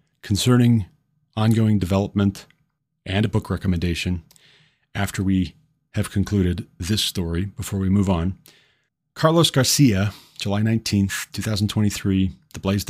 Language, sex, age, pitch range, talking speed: English, male, 40-59, 100-140 Hz, 100 wpm